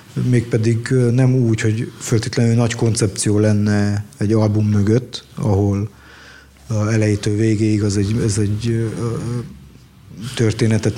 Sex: male